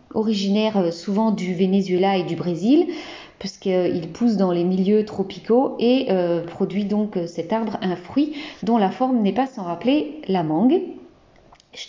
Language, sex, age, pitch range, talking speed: French, female, 40-59, 185-250 Hz, 150 wpm